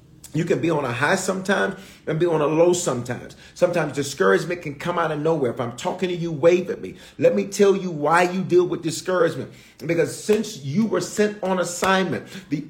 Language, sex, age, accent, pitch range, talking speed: English, male, 40-59, American, 155-195 Hz, 215 wpm